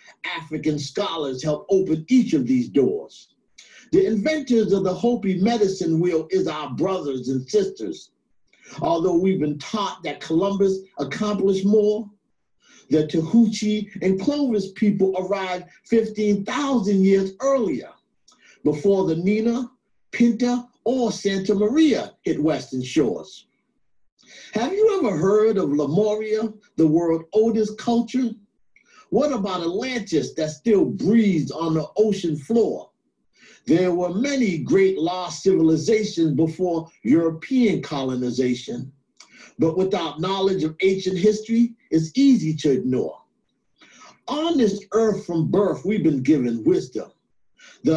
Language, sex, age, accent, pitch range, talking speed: English, male, 50-69, American, 165-230 Hz, 120 wpm